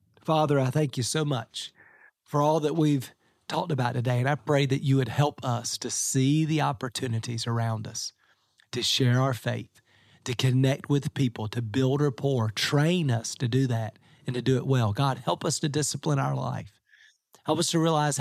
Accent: American